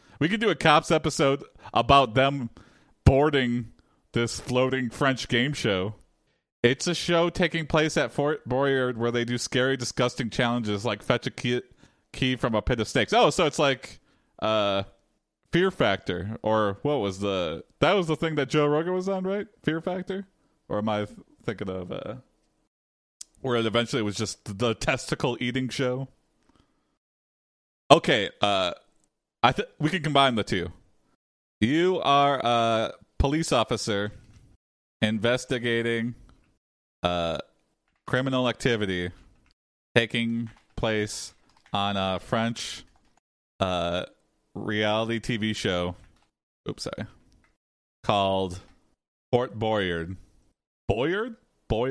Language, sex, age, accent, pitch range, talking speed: English, male, 30-49, American, 105-140 Hz, 125 wpm